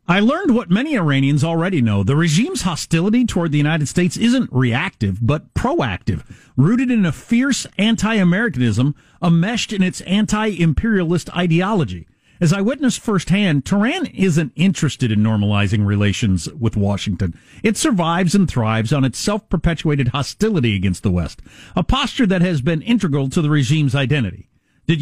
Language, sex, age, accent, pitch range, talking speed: English, male, 50-69, American, 125-200 Hz, 150 wpm